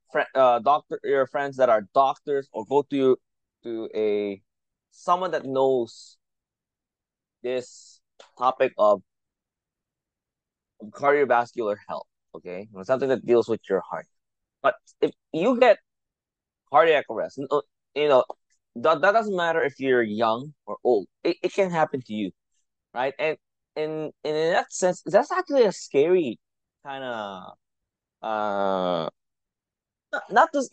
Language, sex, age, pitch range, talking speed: English, male, 20-39, 120-180 Hz, 130 wpm